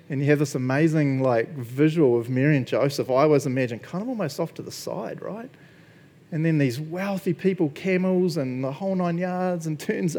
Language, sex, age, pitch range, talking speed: English, male, 40-59, 135-175 Hz, 205 wpm